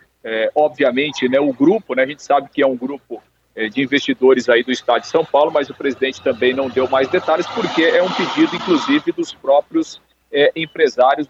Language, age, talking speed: Portuguese, 50-69, 185 wpm